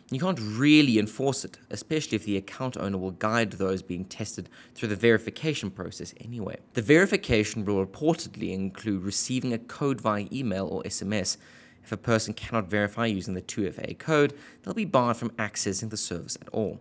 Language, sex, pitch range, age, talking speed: English, male, 100-135 Hz, 20-39, 180 wpm